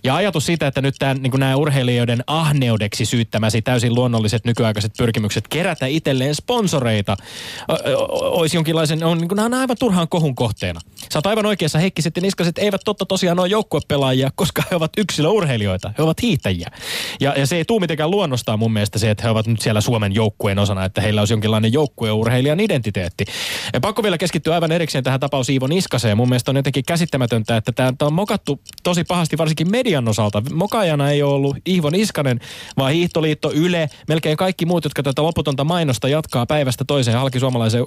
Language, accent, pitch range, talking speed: Finnish, native, 120-175 Hz, 175 wpm